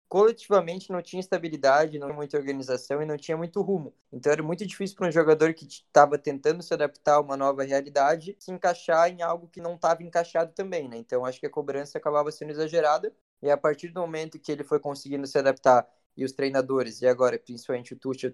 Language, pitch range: Portuguese, 135-170 Hz